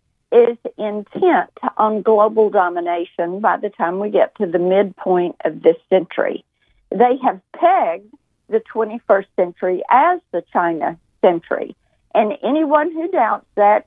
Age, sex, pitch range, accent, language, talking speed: 50-69, female, 200-280 Hz, American, English, 135 wpm